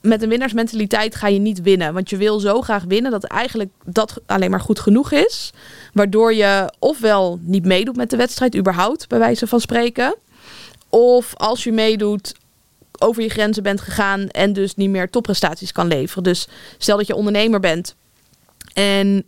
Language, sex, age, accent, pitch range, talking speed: Dutch, female, 20-39, Dutch, 190-215 Hz, 175 wpm